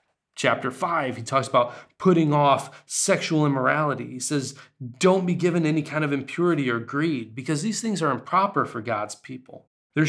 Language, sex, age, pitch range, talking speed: Polish, male, 30-49, 130-165 Hz, 170 wpm